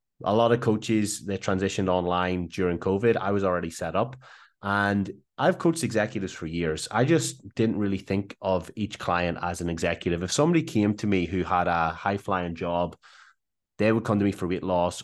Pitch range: 90-105 Hz